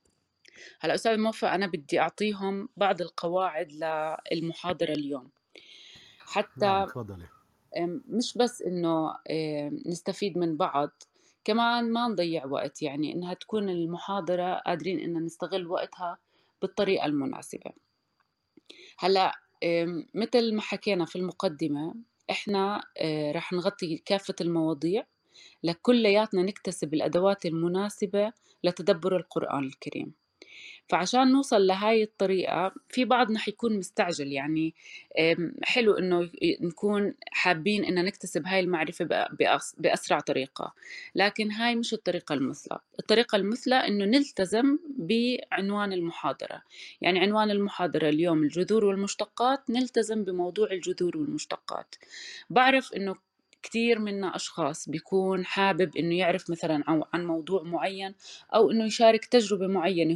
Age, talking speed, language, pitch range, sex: 30-49, 105 wpm, Arabic, 170-220 Hz, female